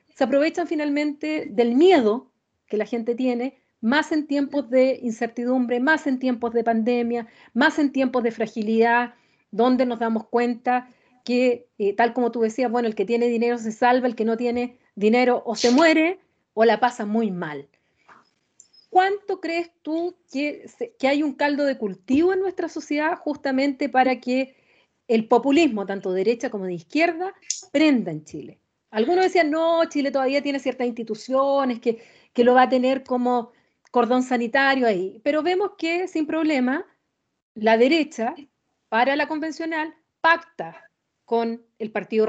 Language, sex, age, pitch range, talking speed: Spanish, female, 40-59, 235-315 Hz, 160 wpm